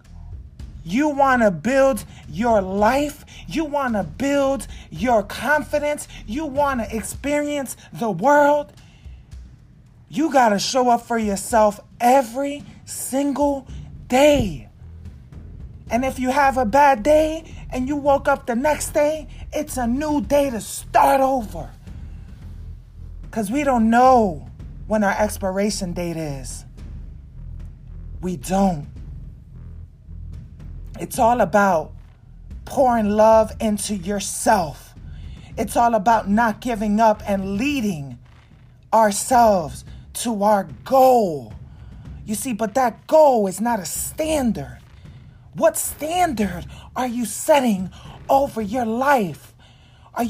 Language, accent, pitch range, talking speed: English, American, 190-280 Hz, 115 wpm